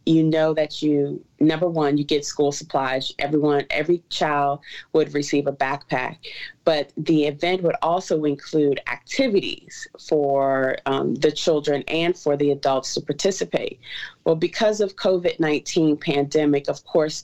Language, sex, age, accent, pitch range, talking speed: English, female, 30-49, American, 145-170 Hz, 145 wpm